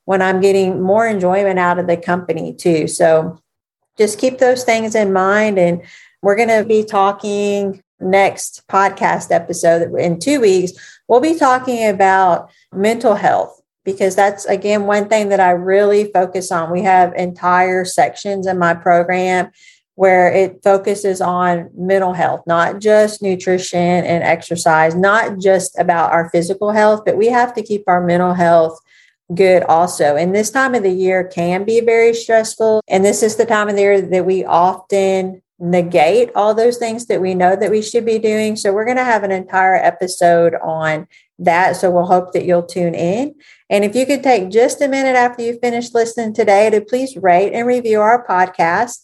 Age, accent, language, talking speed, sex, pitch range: 40-59, American, English, 180 wpm, female, 180-215 Hz